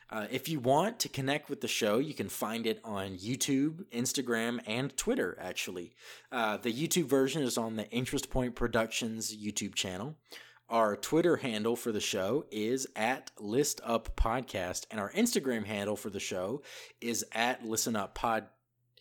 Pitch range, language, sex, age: 105-130 Hz, English, male, 20-39